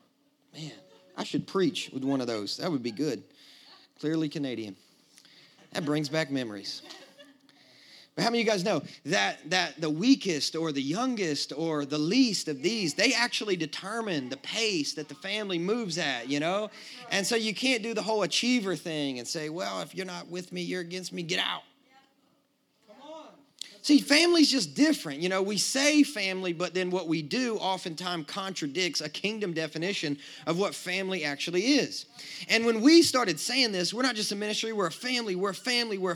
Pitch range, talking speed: 170-270 Hz, 190 wpm